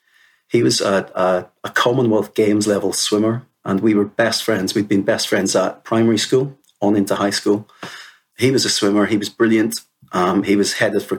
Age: 30-49